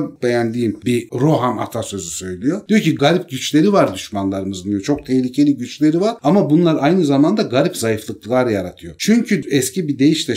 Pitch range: 115-155 Hz